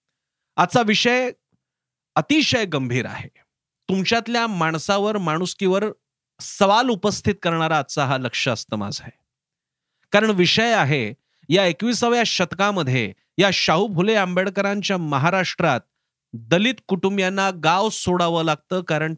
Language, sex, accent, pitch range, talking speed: Marathi, male, native, 155-210 Hz, 105 wpm